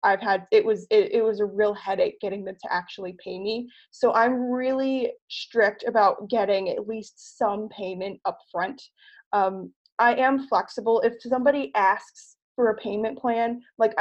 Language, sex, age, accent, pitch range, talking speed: English, female, 20-39, American, 195-240 Hz, 165 wpm